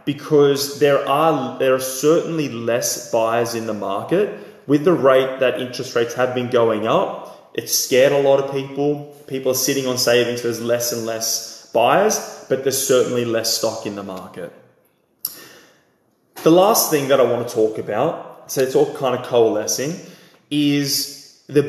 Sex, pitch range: male, 115-140 Hz